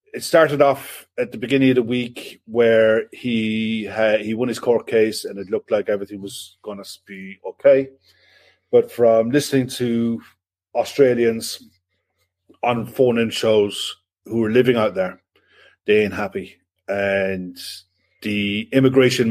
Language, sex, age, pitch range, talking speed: English, male, 30-49, 100-120 Hz, 145 wpm